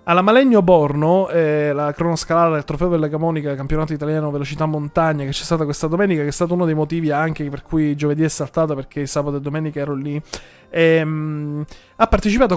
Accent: native